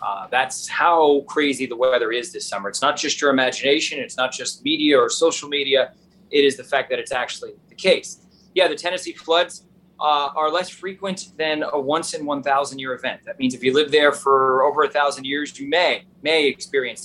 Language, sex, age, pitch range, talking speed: English, male, 30-49, 150-195 Hz, 195 wpm